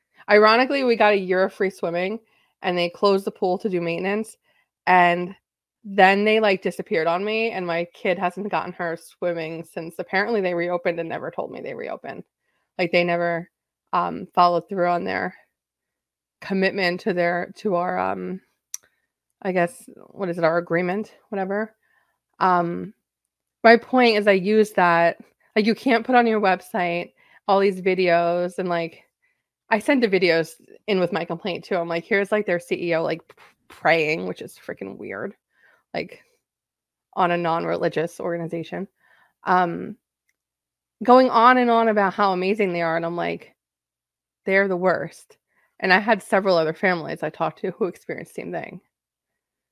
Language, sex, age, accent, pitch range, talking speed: English, female, 20-39, American, 175-215 Hz, 165 wpm